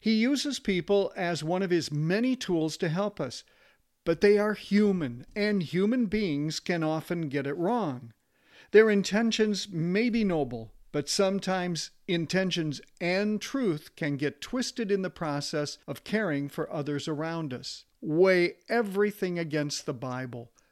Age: 50-69